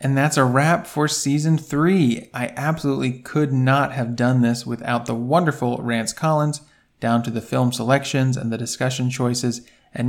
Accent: American